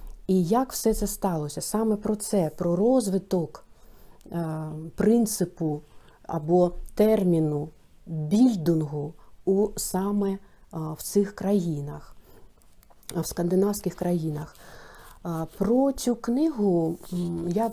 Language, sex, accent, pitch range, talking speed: Ukrainian, female, native, 170-205 Hz, 90 wpm